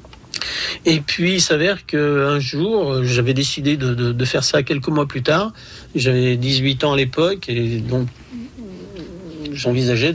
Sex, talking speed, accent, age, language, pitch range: male, 150 wpm, French, 50-69, French, 125-155 Hz